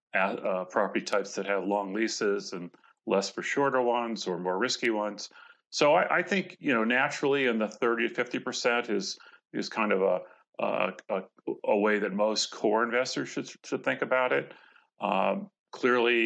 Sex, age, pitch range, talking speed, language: male, 40-59, 95-120 Hz, 180 wpm, English